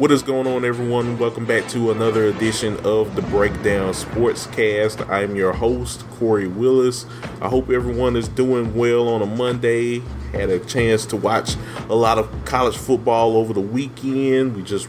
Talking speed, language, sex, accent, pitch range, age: 180 wpm, English, male, American, 105-130 Hz, 30-49